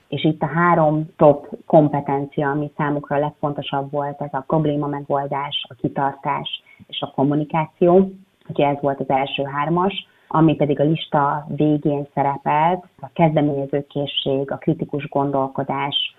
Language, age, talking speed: Hungarian, 30-49, 135 wpm